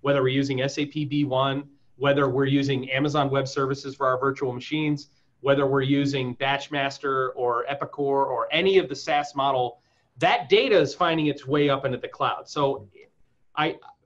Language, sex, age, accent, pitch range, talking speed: English, male, 30-49, American, 130-155 Hz, 165 wpm